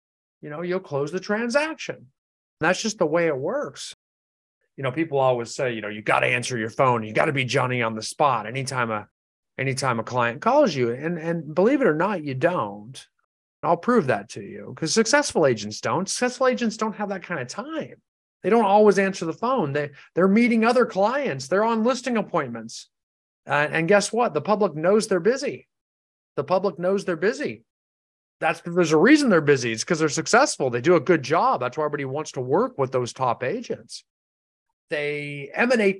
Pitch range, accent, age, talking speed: 125-200 Hz, American, 40-59, 205 wpm